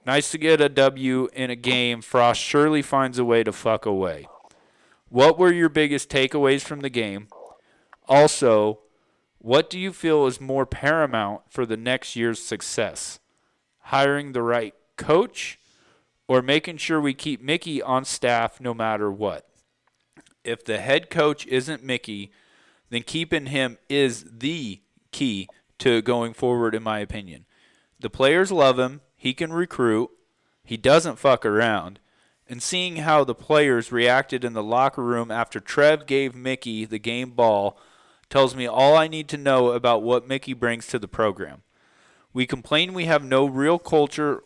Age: 40-59